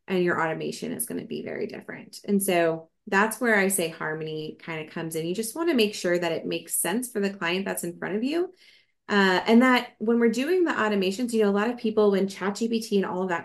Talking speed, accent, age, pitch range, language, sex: 260 wpm, American, 20-39, 175-225 Hz, English, female